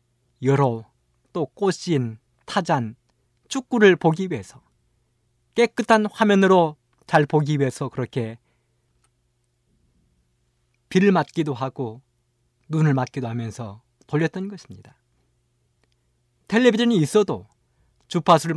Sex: male